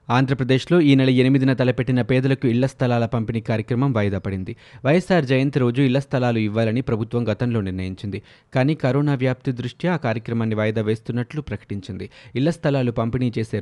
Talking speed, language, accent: 150 wpm, Telugu, native